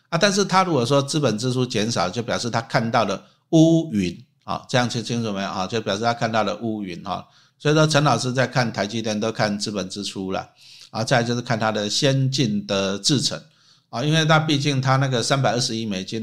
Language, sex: Chinese, male